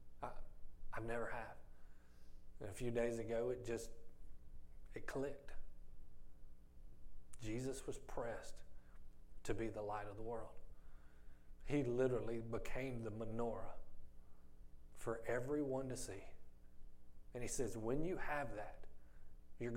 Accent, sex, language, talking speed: American, male, English, 120 wpm